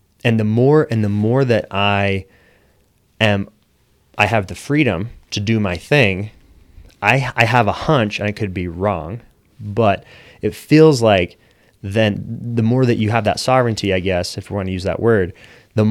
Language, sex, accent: English, male, American